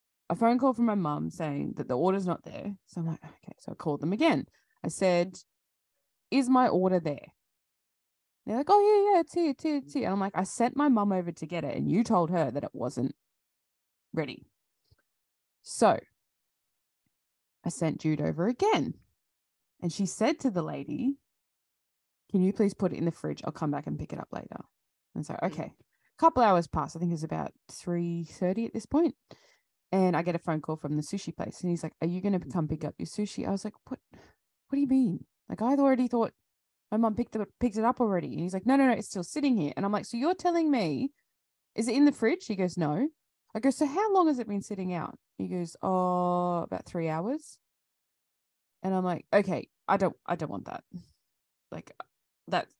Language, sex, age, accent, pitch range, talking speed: English, female, 20-39, Australian, 170-255 Hz, 225 wpm